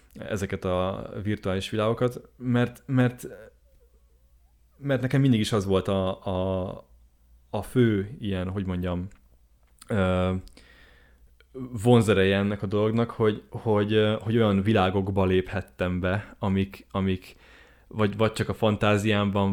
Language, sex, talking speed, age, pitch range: Hungarian, male, 115 wpm, 20-39, 90-105 Hz